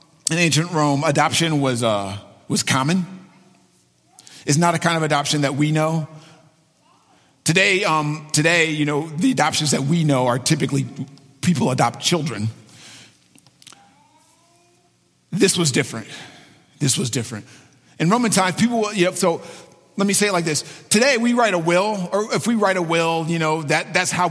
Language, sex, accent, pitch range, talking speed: English, male, American, 145-190 Hz, 170 wpm